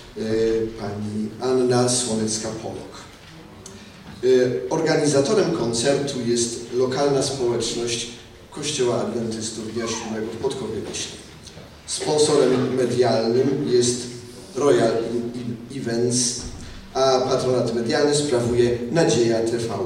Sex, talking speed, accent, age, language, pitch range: male, 75 wpm, native, 40-59, Polish, 110-130 Hz